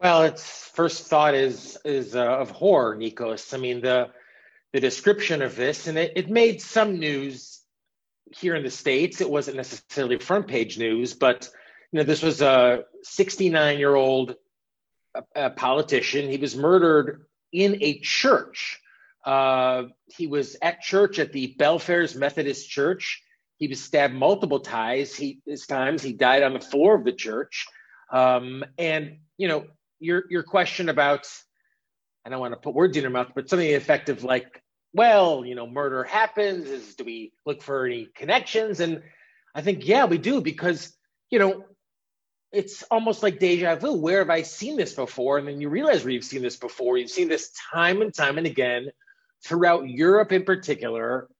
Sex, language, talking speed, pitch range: male, English, 175 wpm, 135-190 Hz